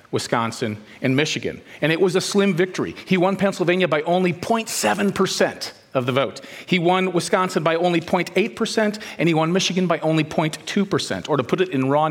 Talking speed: 185 wpm